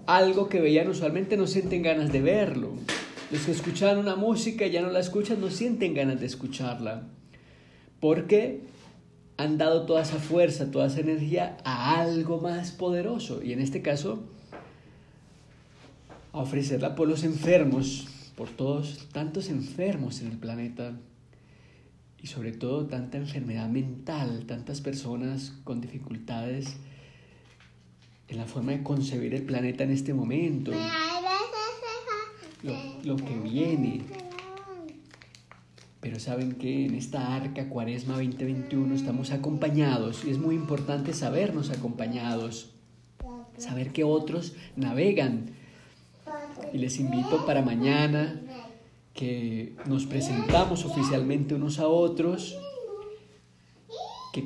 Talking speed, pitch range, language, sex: 120 wpm, 125-165 Hz, Spanish, male